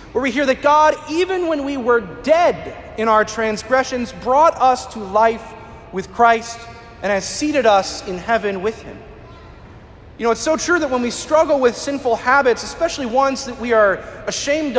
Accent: American